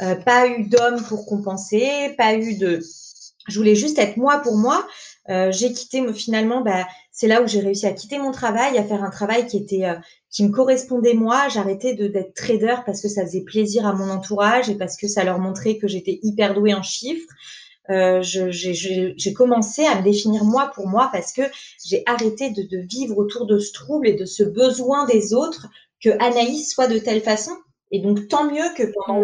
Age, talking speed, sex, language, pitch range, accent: 30-49, 215 wpm, female, French, 200-245 Hz, French